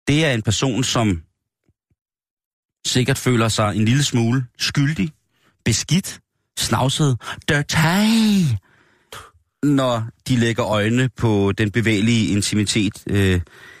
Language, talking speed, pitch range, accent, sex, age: Danish, 100 wpm, 105-135 Hz, native, male, 30-49